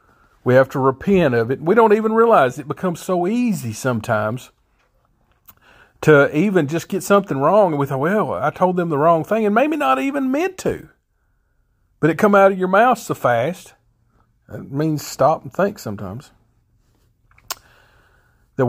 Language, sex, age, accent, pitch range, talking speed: English, male, 50-69, American, 110-150 Hz, 170 wpm